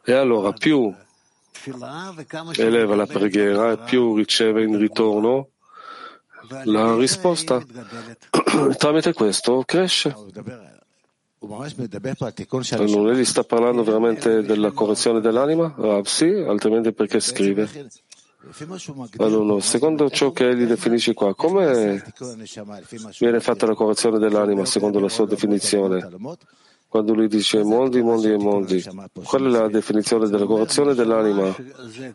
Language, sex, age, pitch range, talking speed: Italian, male, 40-59, 105-135 Hz, 110 wpm